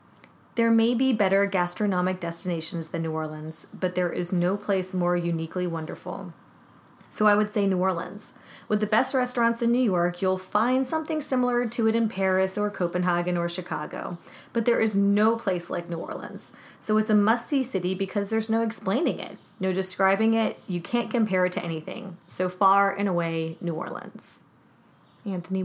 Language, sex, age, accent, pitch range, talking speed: English, female, 20-39, American, 175-210 Hz, 180 wpm